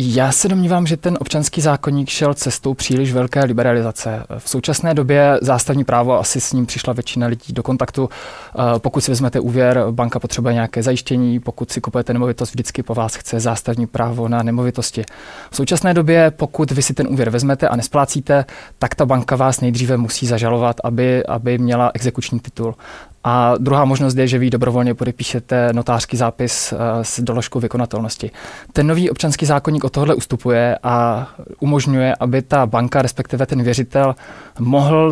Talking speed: 160 wpm